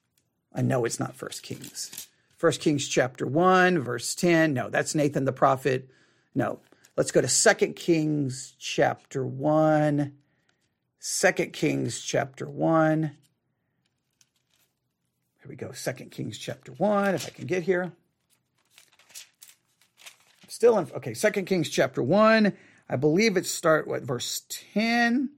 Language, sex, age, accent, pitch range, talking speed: English, male, 40-59, American, 155-225 Hz, 135 wpm